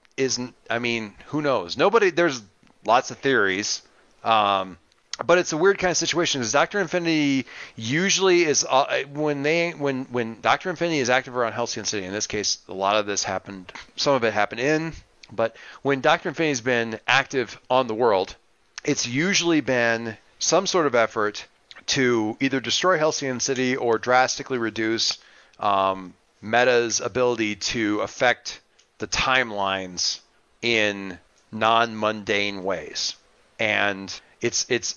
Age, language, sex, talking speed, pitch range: 40-59, English, male, 145 wpm, 105-140 Hz